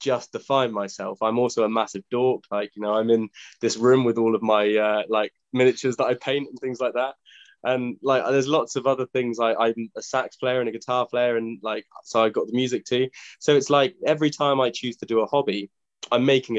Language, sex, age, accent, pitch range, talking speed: English, male, 20-39, British, 105-125 Hz, 230 wpm